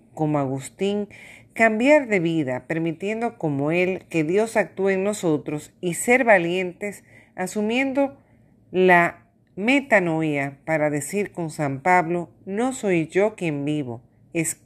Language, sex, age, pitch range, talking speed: Spanish, female, 50-69, 135-205 Hz, 125 wpm